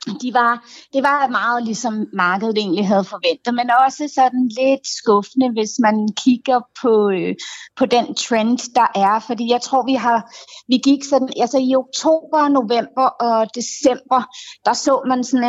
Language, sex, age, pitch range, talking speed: Danish, female, 30-49, 205-250 Hz, 170 wpm